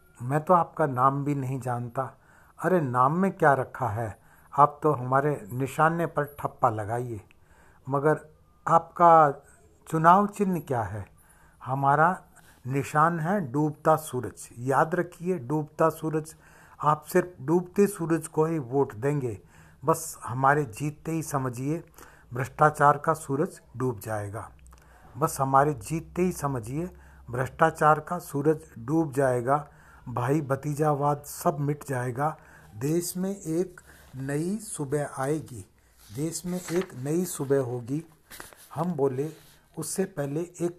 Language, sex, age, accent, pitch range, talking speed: Hindi, male, 60-79, native, 135-160 Hz, 125 wpm